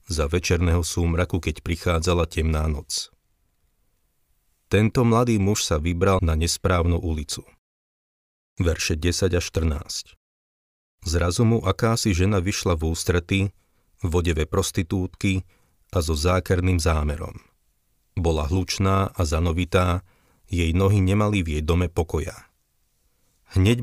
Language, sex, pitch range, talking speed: Slovak, male, 80-95 Hz, 115 wpm